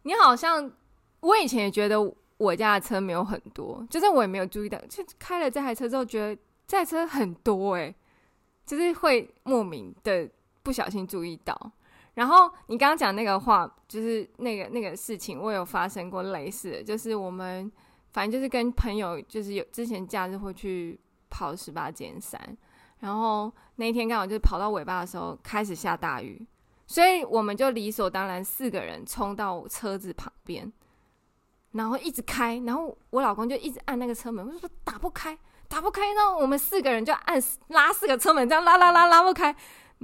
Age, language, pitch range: 20-39, Chinese, 205-300 Hz